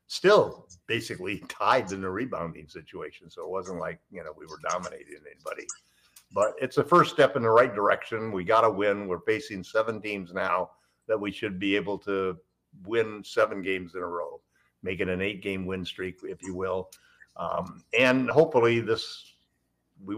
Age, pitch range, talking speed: 50-69, 95-120 Hz, 180 wpm